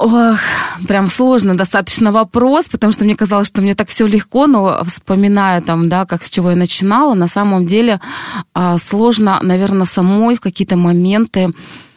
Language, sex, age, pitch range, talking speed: Russian, female, 20-39, 170-210 Hz, 160 wpm